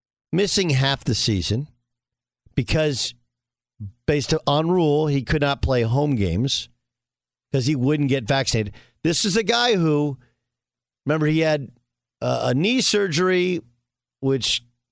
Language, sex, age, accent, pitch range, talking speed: English, male, 50-69, American, 120-170 Hz, 125 wpm